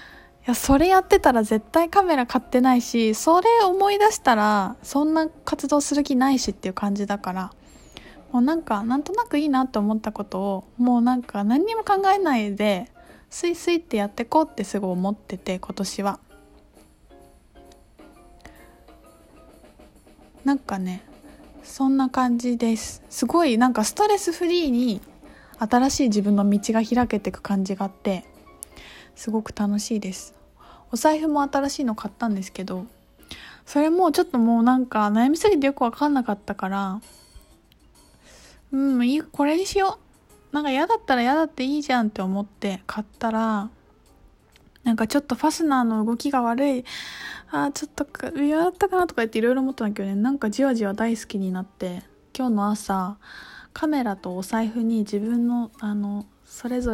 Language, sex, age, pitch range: Japanese, female, 20-39, 210-290 Hz